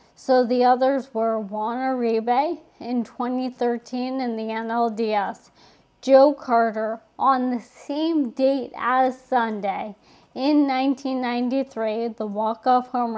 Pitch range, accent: 220-255 Hz, American